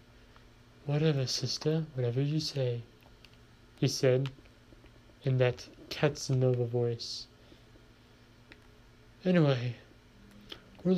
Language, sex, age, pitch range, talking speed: English, male, 20-39, 115-145 Hz, 70 wpm